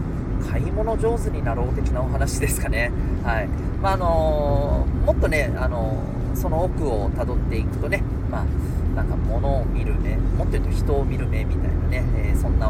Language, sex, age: Japanese, male, 40-59